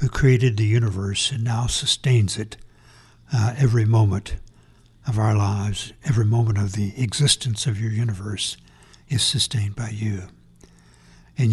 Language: English